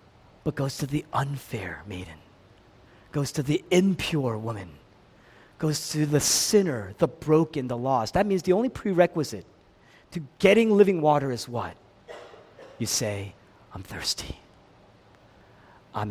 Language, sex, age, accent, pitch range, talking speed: English, male, 40-59, American, 110-175 Hz, 130 wpm